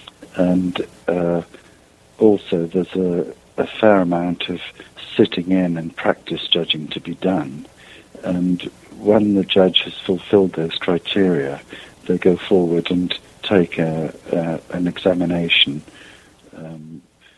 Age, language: 50-69, English